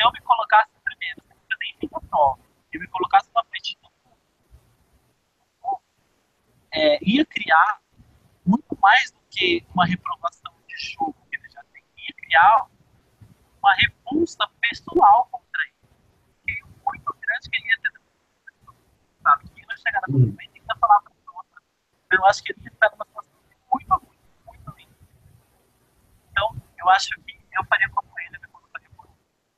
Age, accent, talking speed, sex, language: 30-49, Brazilian, 160 wpm, male, Portuguese